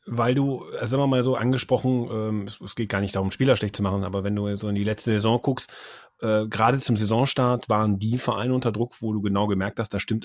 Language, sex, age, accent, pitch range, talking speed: German, male, 30-49, German, 105-130 Hz, 240 wpm